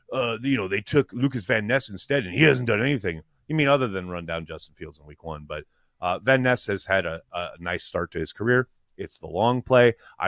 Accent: American